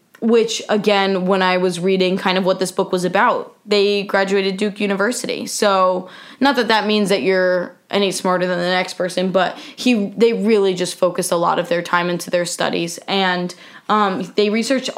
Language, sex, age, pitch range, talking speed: English, female, 10-29, 185-235 Hz, 190 wpm